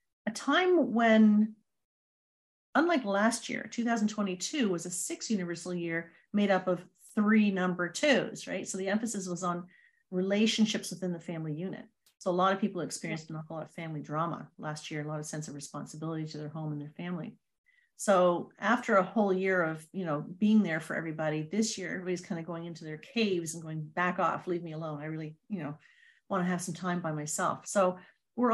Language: English